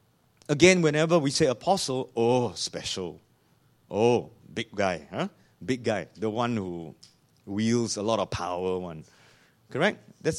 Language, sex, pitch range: English, male, 120-170 Hz